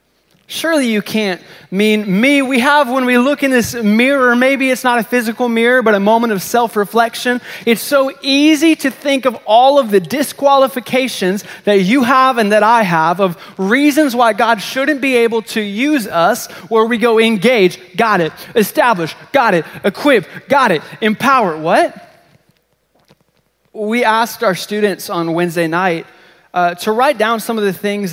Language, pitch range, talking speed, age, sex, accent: English, 170-235 Hz, 170 wpm, 20-39, male, American